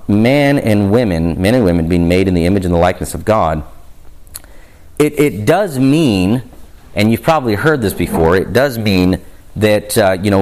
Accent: American